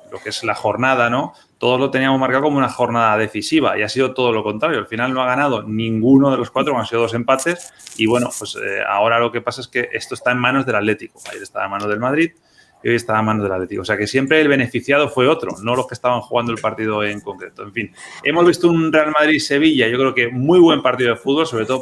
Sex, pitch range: male, 115-135 Hz